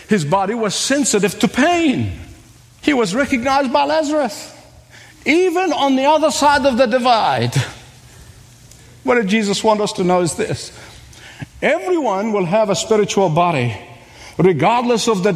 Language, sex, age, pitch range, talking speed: English, male, 50-69, 160-255 Hz, 145 wpm